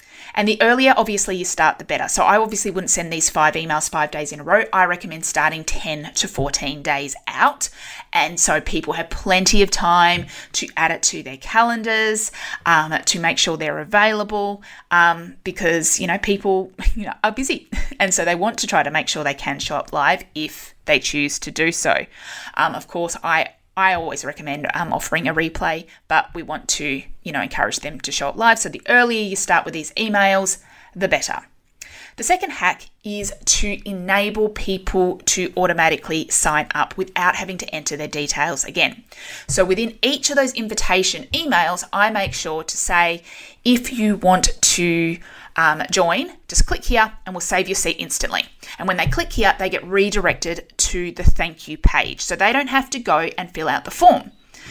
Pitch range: 160-210 Hz